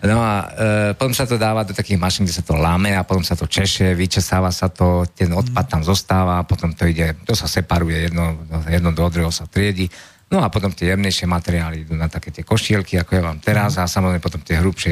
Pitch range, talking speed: 90-110 Hz, 235 wpm